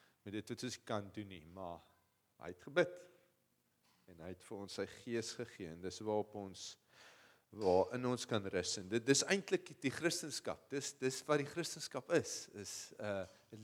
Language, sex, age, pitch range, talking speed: English, male, 40-59, 100-130 Hz, 200 wpm